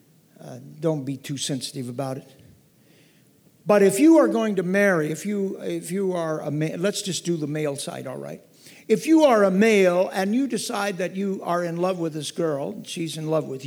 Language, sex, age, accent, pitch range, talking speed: English, male, 60-79, American, 145-185 Hz, 215 wpm